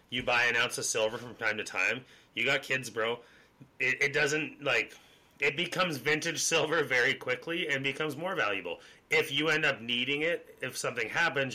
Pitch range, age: 125-165 Hz, 30-49